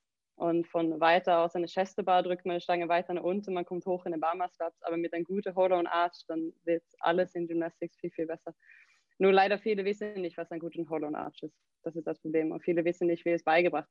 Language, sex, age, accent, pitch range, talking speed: German, female, 20-39, German, 165-180 Hz, 230 wpm